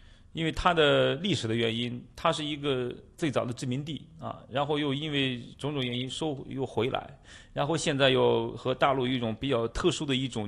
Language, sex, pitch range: Chinese, male, 110-145 Hz